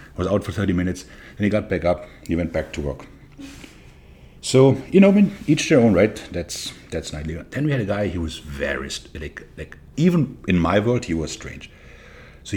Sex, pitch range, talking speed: male, 80-110 Hz, 225 wpm